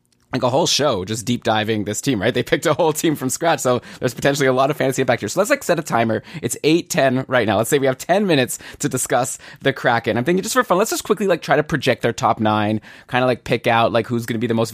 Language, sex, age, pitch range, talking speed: English, male, 20-39, 120-155 Hz, 300 wpm